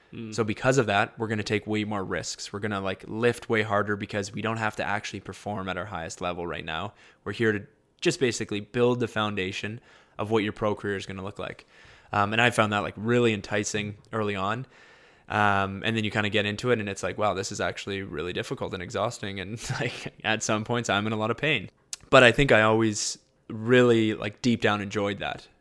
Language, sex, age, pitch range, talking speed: English, male, 20-39, 100-110 Hz, 235 wpm